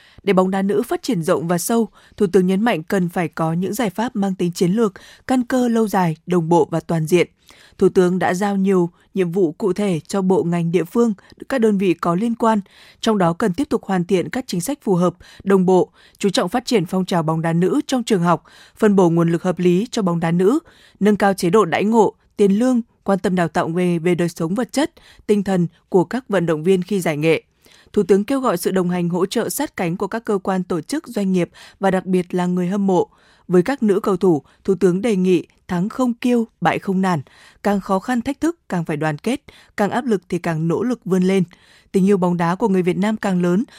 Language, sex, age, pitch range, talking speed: Vietnamese, female, 20-39, 180-220 Hz, 255 wpm